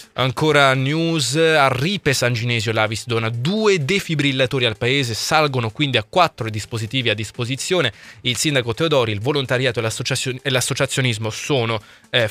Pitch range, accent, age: 120-155 Hz, native, 20-39